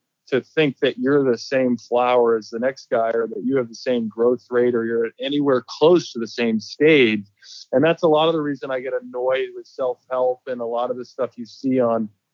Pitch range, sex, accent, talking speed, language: 120-165 Hz, male, American, 235 wpm, English